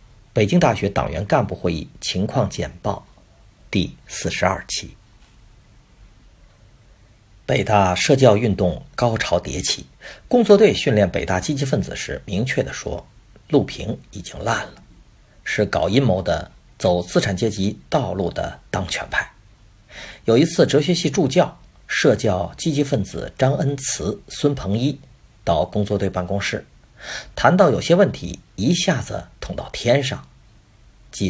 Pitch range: 100-135 Hz